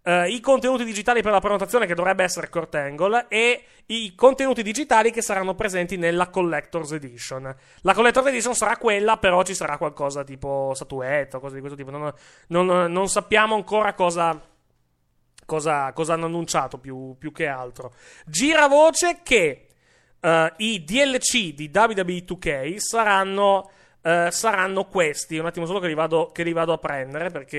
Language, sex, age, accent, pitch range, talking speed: Italian, male, 30-49, native, 155-215 Hz, 165 wpm